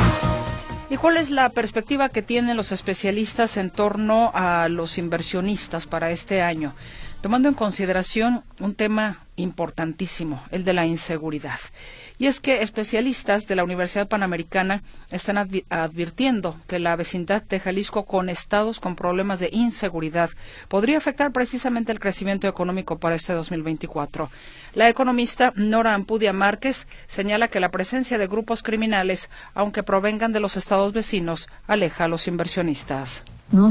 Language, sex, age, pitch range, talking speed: Spanish, female, 40-59, 170-215 Hz, 140 wpm